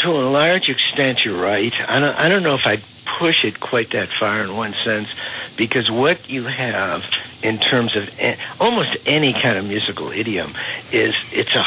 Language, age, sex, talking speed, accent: English, 60-79, male, 180 wpm, American